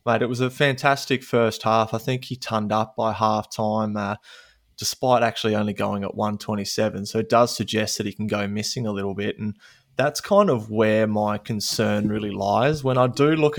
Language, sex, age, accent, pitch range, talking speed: English, male, 20-39, Australian, 105-125 Hz, 210 wpm